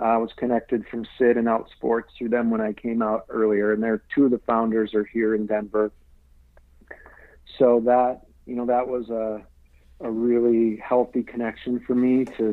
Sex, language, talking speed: male, English, 185 wpm